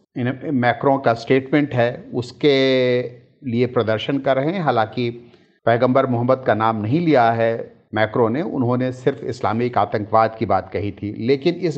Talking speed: 160 wpm